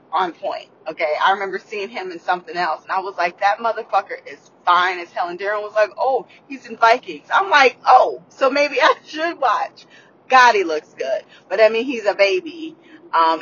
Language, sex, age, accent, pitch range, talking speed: English, female, 20-39, American, 185-260 Hz, 210 wpm